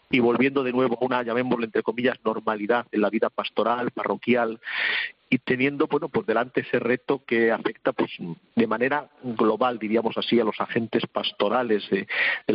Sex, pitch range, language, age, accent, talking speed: male, 110-125 Hz, Spanish, 50-69, Spanish, 170 wpm